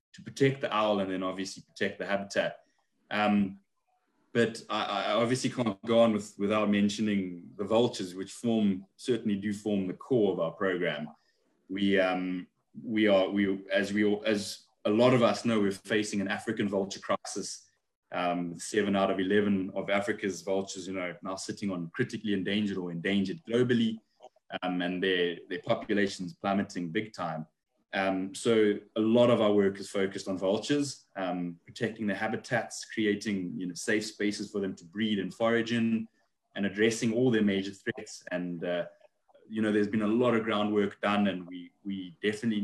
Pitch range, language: 95-110 Hz, English